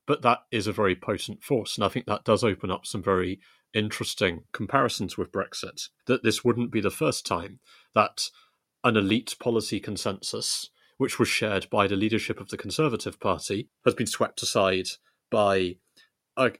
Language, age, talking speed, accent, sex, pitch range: English, 30-49, 175 wpm, British, male, 100-120 Hz